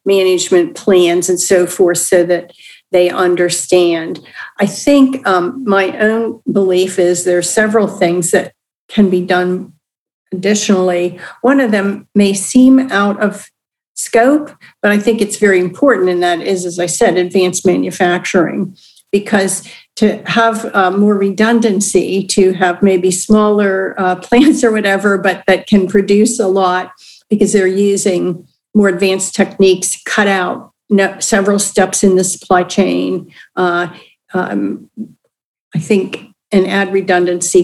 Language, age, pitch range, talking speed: English, 50-69, 180-210 Hz, 140 wpm